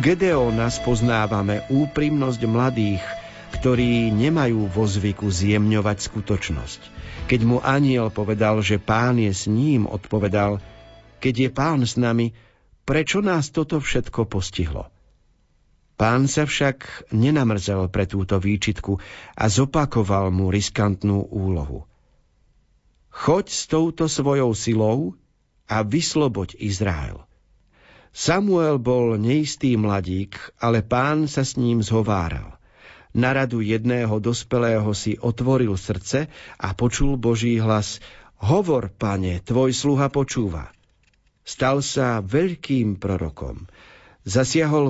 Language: Slovak